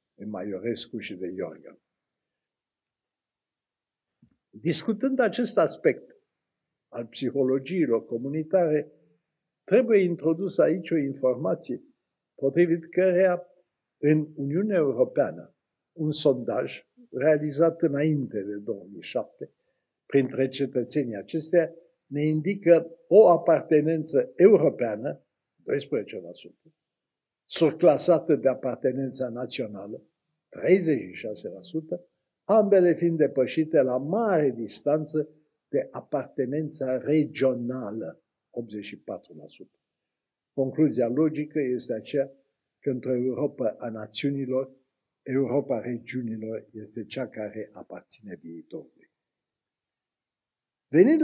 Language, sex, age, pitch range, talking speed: Romanian, male, 60-79, 130-170 Hz, 80 wpm